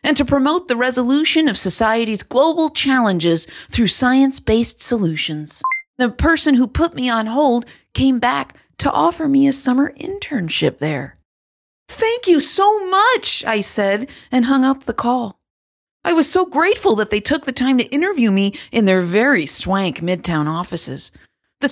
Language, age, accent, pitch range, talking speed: English, 40-59, American, 210-290 Hz, 160 wpm